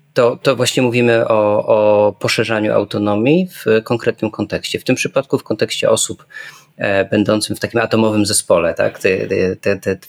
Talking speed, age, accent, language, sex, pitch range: 170 wpm, 20-39, native, Polish, male, 105-120 Hz